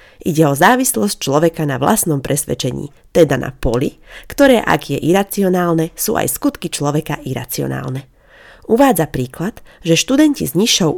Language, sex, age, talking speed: Slovak, female, 30-49, 135 wpm